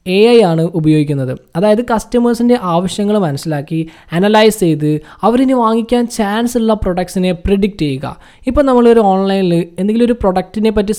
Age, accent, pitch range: 20-39, native, 165-225 Hz